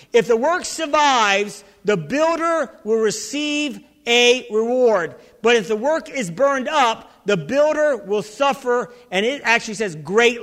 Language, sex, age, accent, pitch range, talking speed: English, male, 50-69, American, 245-340 Hz, 150 wpm